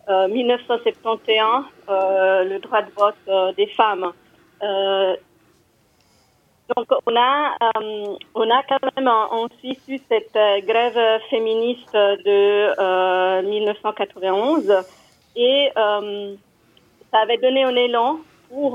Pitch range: 200-245 Hz